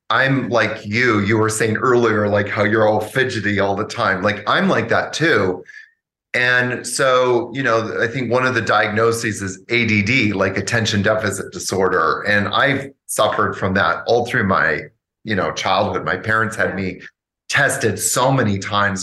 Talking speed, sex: 175 wpm, male